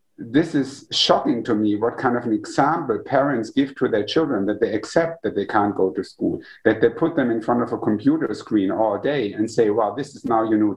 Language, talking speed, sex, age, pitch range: English, 245 wpm, male, 50-69, 125-170 Hz